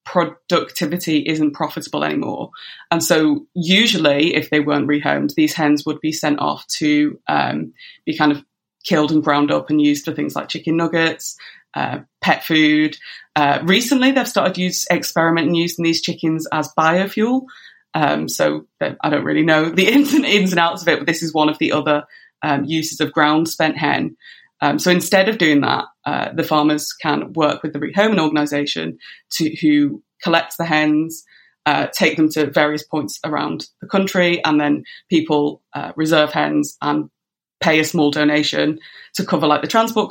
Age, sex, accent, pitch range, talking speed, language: 20-39, female, British, 150-185 Hz, 175 wpm, English